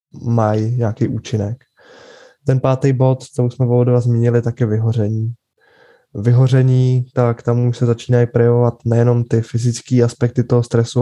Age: 20-39